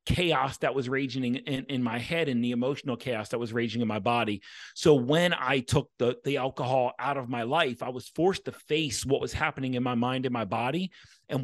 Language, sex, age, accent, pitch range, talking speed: English, male, 40-59, American, 120-145 Hz, 235 wpm